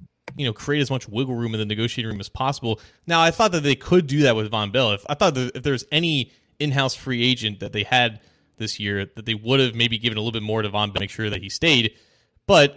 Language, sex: English, male